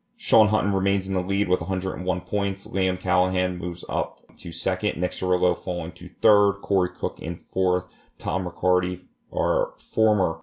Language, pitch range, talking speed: English, 85-95 Hz, 160 wpm